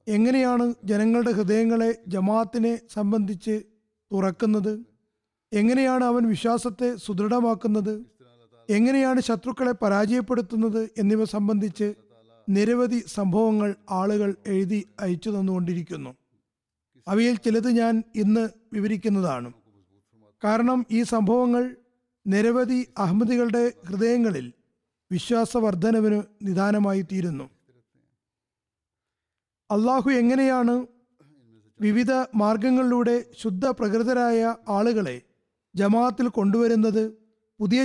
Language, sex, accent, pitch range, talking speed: Malayalam, male, native, 200-245 Hz, 70 wpm